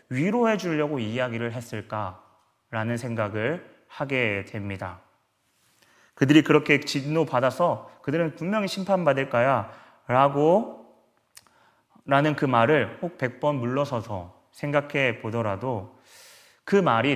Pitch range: 110-140 Hz